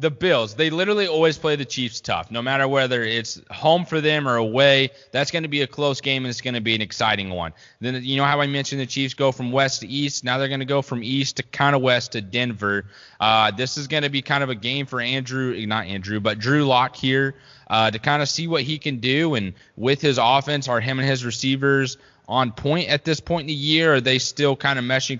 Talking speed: 260 wpm